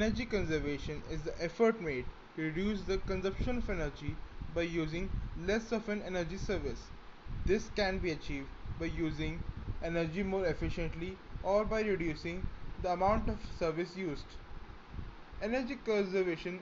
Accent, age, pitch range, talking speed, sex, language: native, 20-39, 155-200 Hz, 135 wpm, male, Hindi